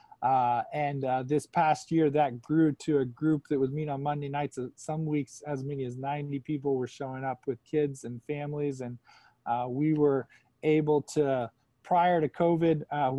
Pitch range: 130-150 Hz